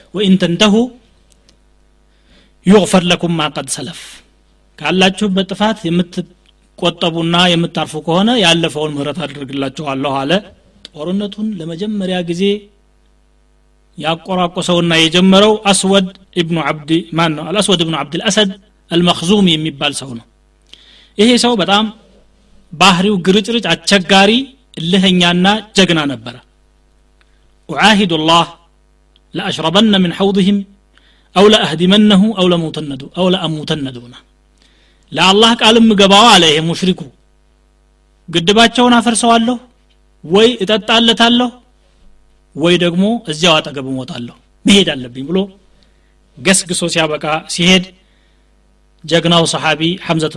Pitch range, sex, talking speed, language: 155-200 Hz, male, 75 wpm, Amharic